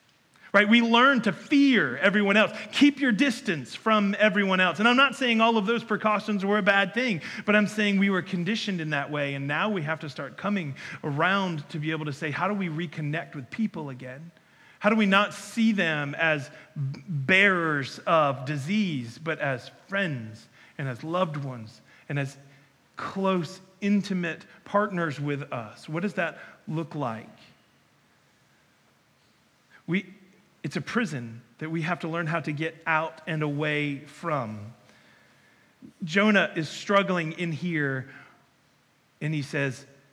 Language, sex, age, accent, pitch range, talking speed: English, male, 40-59, American, 155-215 Hz, 160 wpm